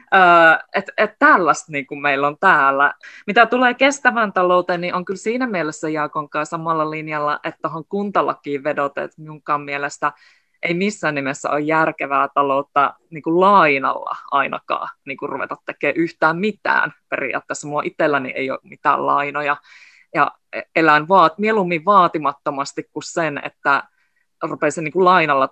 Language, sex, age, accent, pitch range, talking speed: Finnish, female, 20-39, native, 155-190 Hz, 150 wpm